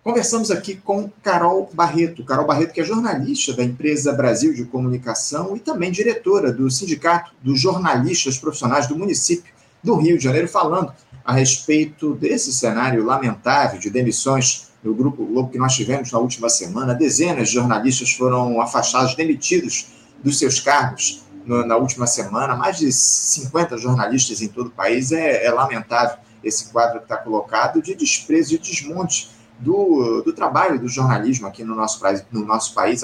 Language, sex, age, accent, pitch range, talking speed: Portuguese, male, 40-59, Brazilian, 125-170 Hz, 160 wpm